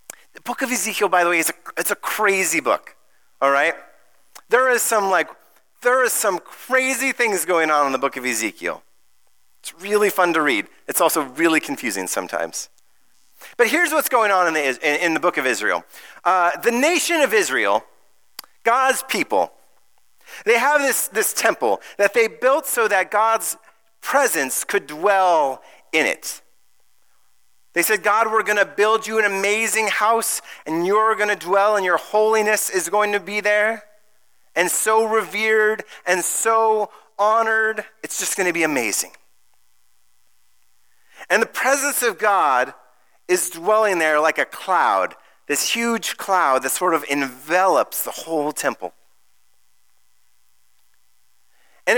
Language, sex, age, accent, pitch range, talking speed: English, male, 40-59, American, 165-230 Hz, 155 wpm